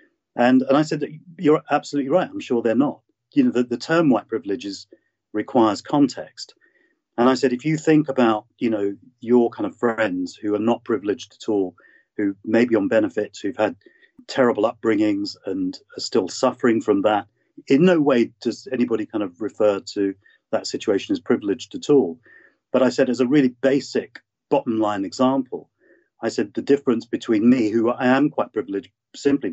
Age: 40-59